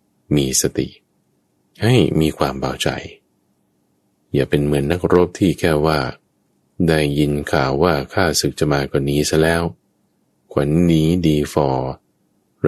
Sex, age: male, 20-39